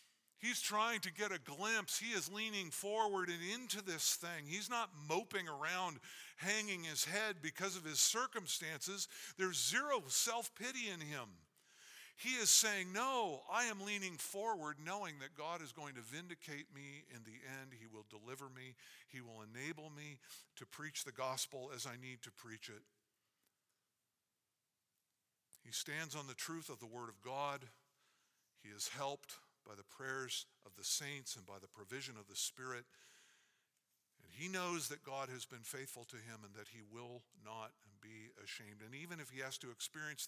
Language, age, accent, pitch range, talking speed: English, 50-69, American, 120-170 Hz, 175 wpm